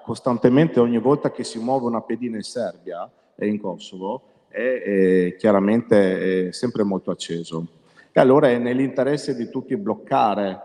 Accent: native